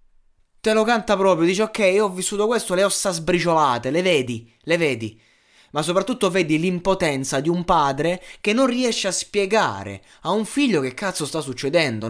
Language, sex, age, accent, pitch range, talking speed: Italian, male, 20-39, native, 125-170 Hz, 175 wpm